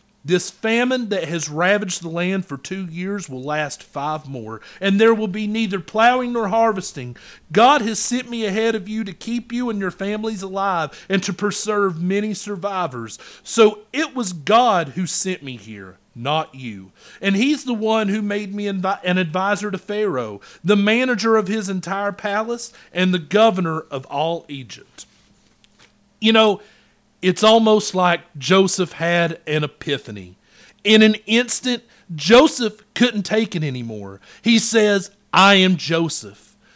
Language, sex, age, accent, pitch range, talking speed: English, male, 40-59, American, 165-215 Hz, 155 wpm